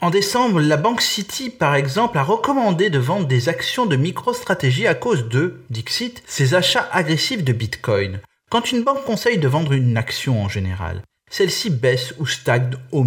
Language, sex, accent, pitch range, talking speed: Italian, male, French, 115-180 Hz, 180 wpm